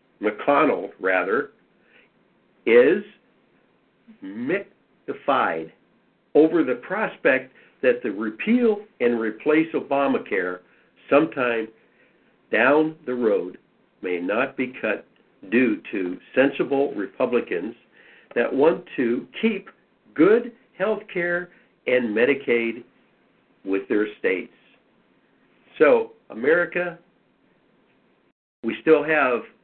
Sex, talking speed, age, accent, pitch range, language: male, 85 wpm, 60-79, American, 120-175 Hz, English